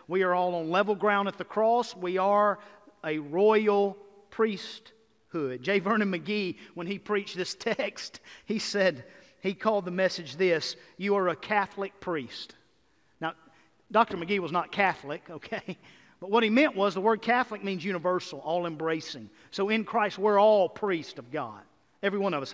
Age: 50-69